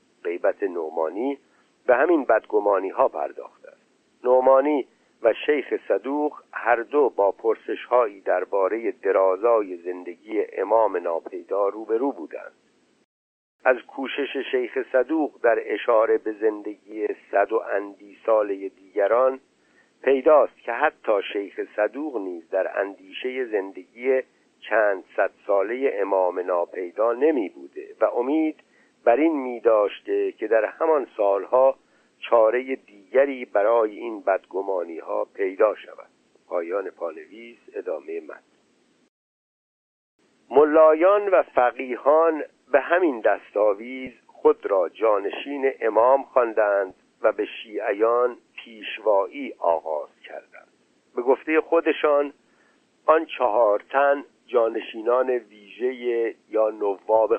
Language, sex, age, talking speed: Persian, male, 50-69, 105 wpm